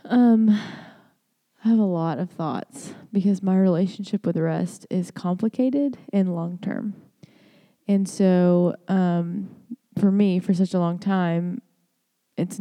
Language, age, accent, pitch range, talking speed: English, 20-39, American, 175-200 Hz, 135 wpm